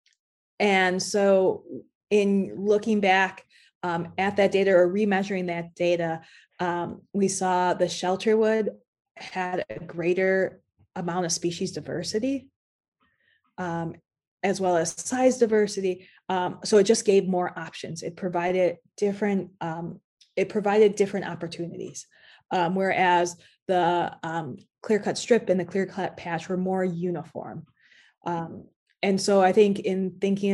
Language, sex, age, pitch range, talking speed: English, female, 20-39, 175-200 Hz, 125 wpm